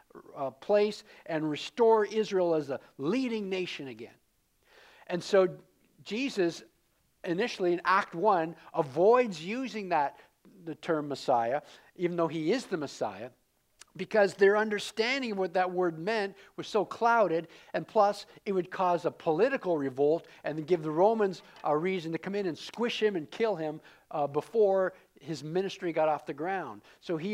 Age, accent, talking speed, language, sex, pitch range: 50-69, American, 160 wpm, English, male, 150-200 Hz